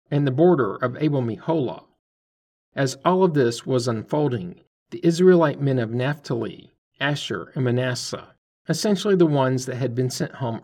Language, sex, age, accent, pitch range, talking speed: English, male, 50-69, American, 120-165 Hz, 150 wpm